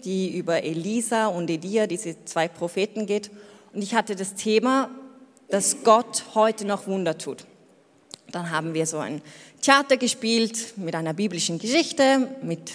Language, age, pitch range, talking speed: German, 30-49, 170-225 Hz, 150 wpm